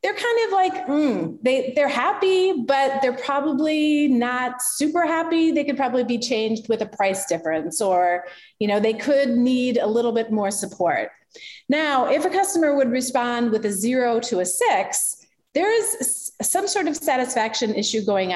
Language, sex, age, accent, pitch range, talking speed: English, female, 30-49, American, 220-300 Hz, 175 wpm